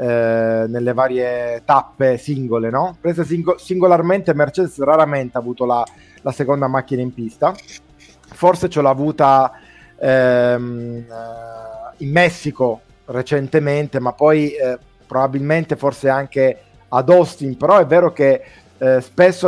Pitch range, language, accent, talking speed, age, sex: 125-150 Hz, Italian, native, 120 wpm, 30-49, male